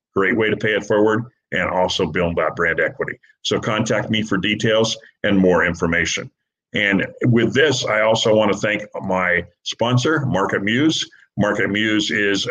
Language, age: English, 50-69